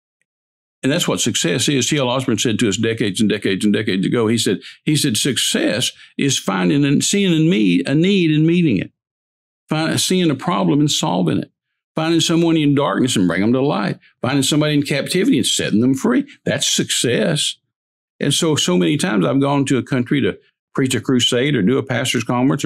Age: 60-79